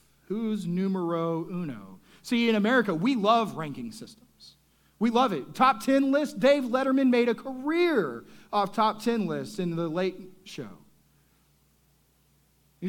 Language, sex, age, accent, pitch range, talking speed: English, male, 40-59, American, 190-235 Hz, 140 wpm